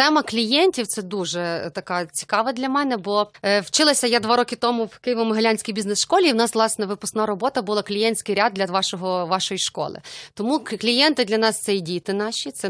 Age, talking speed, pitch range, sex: 30-49, 185 wpm, 195-240 Hz, female